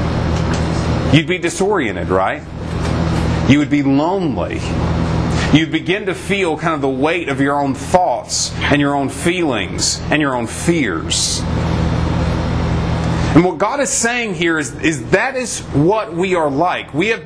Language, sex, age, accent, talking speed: English, male, 30-49, American, 155 wpm